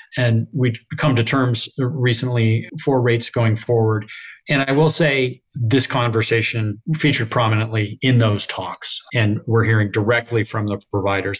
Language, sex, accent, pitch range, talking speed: English, male, American, 110-135 Hz, 145 wpm